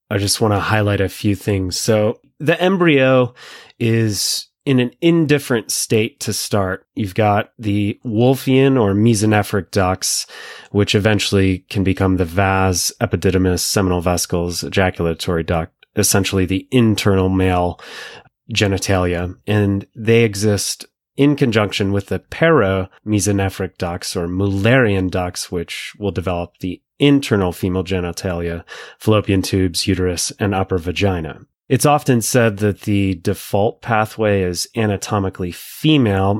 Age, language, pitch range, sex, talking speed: 30-49, English, 95-110 Hz, male, 125 wpm